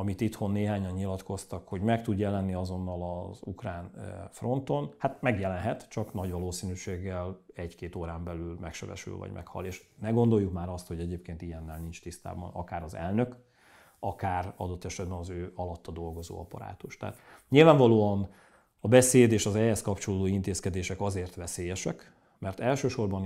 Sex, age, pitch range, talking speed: male, 40-59, 90-110 Hz, 145 wpm